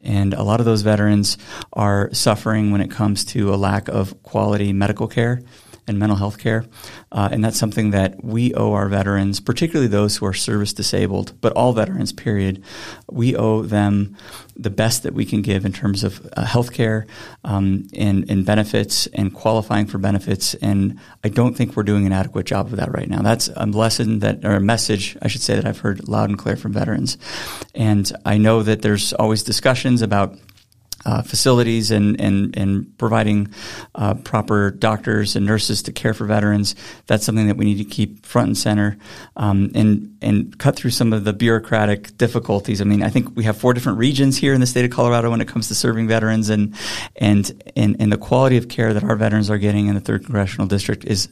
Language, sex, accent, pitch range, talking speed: English, male, American, 100-115 Hz, 205 wpm